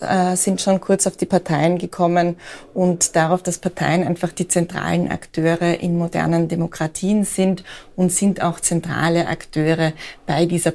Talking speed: 145 wpm